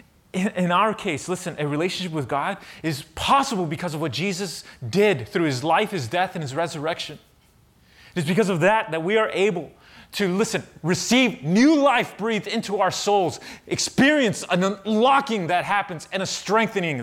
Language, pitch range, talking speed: English, 155-220 Hz, 170 wpm